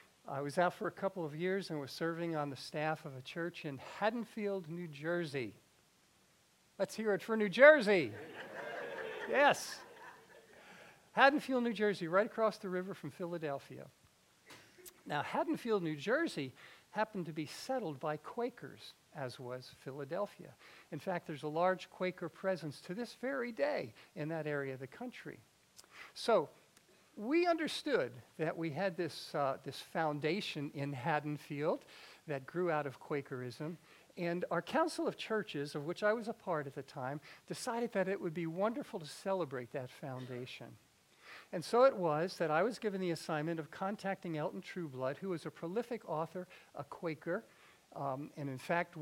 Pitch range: 150-200 Hz